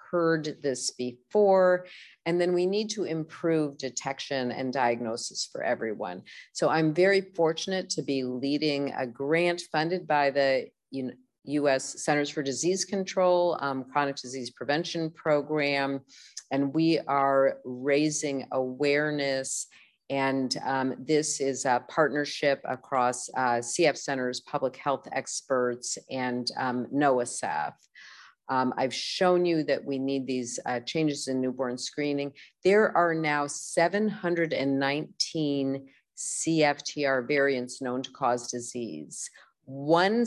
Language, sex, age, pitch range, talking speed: English, female, 40-59, 130-155 Hz, 120 wpm